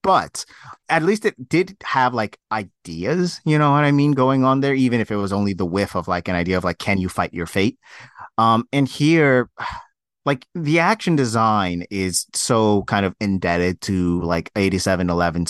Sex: male